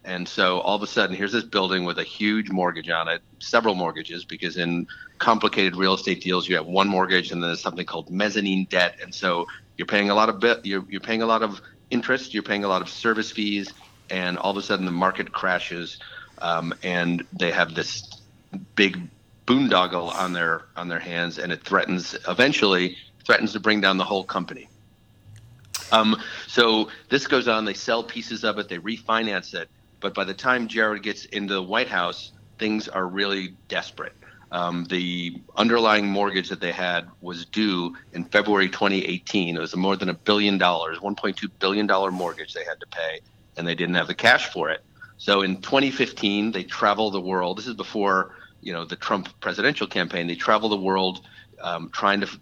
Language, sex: English, male